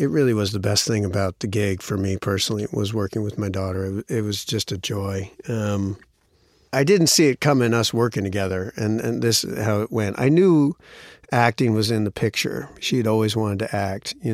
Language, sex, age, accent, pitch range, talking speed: English, male, 50-69, American, 105-135 Hz, 220 wpm